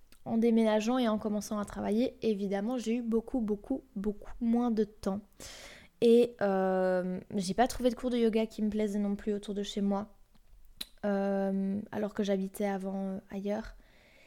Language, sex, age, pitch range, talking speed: French, female, 20-39, 200-230 Hz, 170 wpm